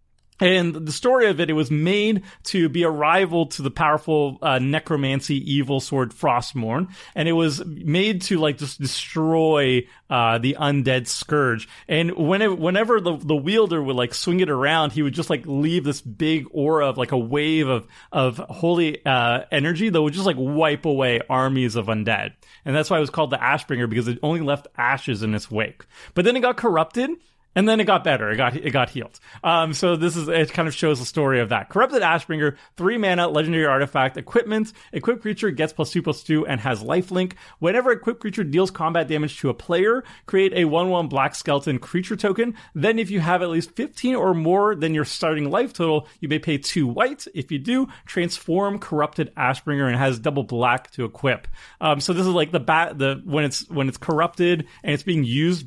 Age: 30-49